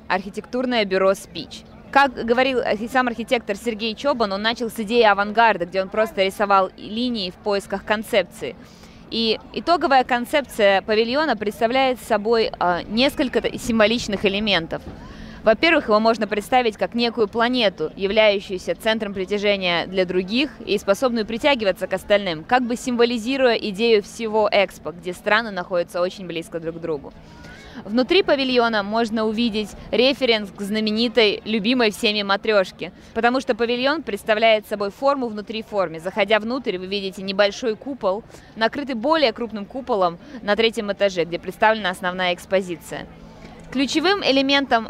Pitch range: 195-240 Hz